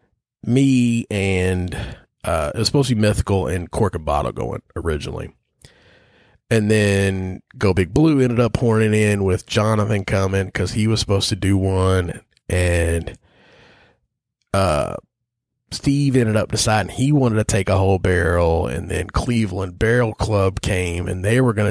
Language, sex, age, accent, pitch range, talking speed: English, male, 30-49, American, 90-115 Hz, 160 wpm